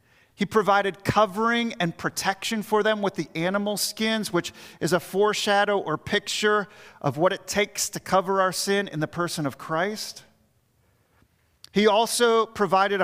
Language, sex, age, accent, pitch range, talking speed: English, male, 40-59, American, 170-210 Hz, 150 wpm